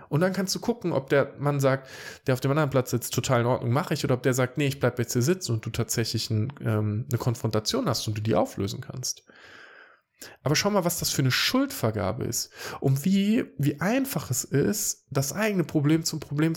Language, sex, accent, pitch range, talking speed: German, male, German, 115-165 Hz, 225 wpm